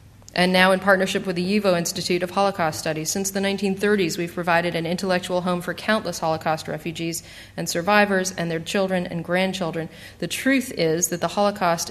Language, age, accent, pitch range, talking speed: English, 40-59, American, 160-195 Hz, 180 wpm